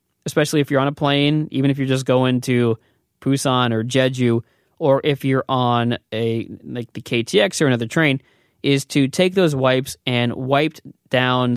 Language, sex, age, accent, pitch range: Korean, male, 20-39, American, 120-145 Hz